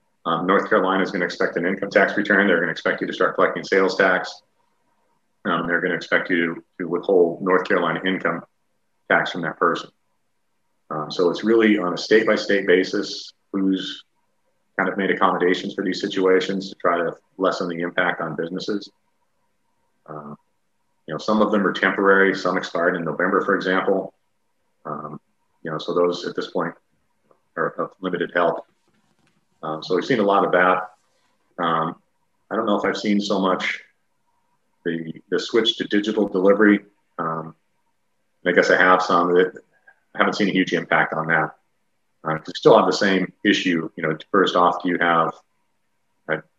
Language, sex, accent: English, male, American